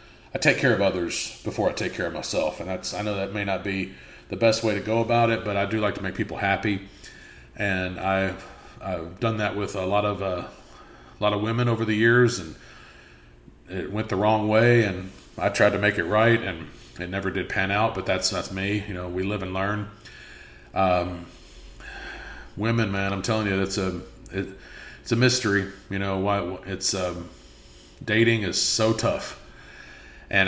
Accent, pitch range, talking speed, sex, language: American, 90-110 Hz, 200 wpm, male, English